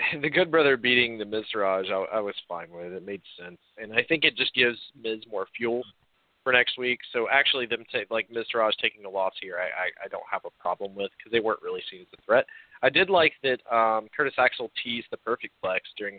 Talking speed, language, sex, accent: 235 wpm, English, male, American